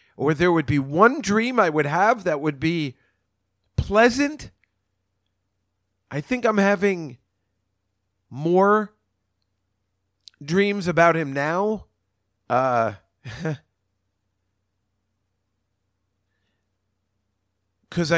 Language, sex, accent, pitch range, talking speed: English, male, American, 95-115 Hz, 80 wpm